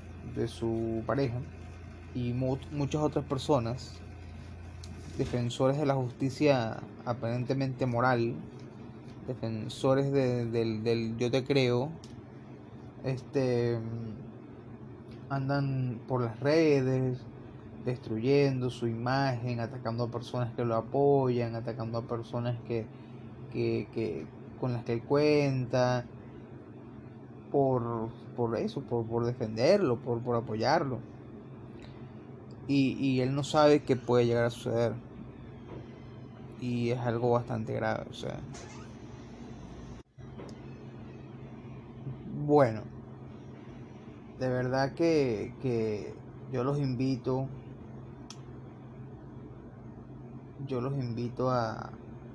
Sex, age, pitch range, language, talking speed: male, 20-39, 115-130 Hz, Spanish, 95 wpm